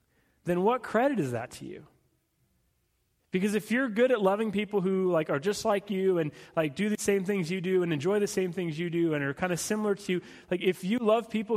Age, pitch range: 30-49, 165-220 Hz